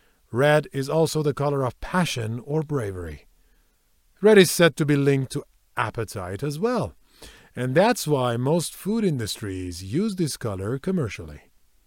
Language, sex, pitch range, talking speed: Persian, male, 100-160 Hz, 145 wpm